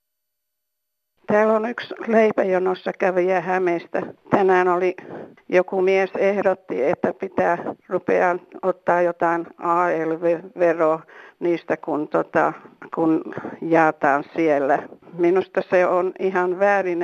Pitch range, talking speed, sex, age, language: 170-195 Hz, 100 wpm, female, 50-69, Finnish